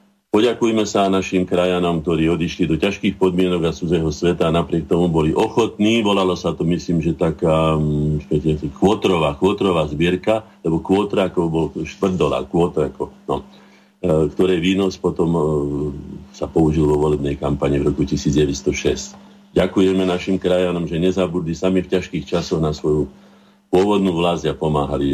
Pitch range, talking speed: 80-95 Hz, 130 wpm